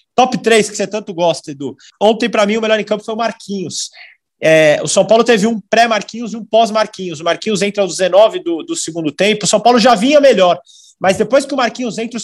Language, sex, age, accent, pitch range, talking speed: Portuguese, male, 20-39, Brazilian, 190-235 Hz, 235 wpm